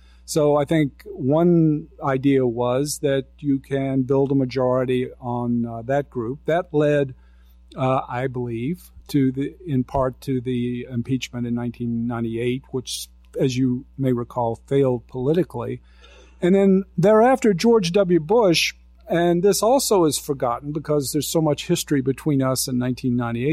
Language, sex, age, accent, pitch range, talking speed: English, male, 50-69, American, 125-155 Hz, 155 wpm